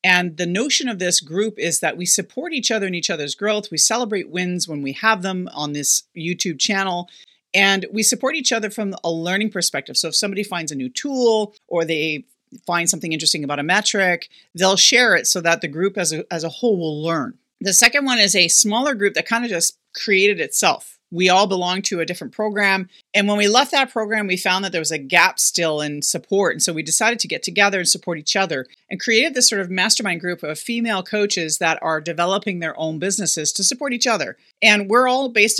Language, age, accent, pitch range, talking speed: English, 40-59, American, 170-220 Hz, 230 wpm